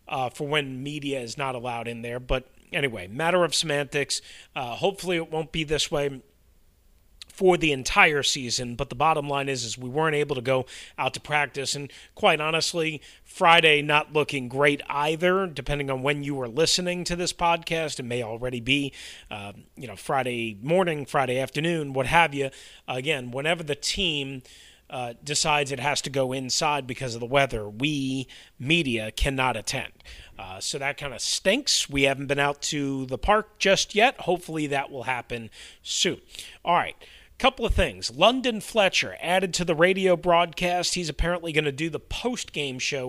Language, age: English, 30-49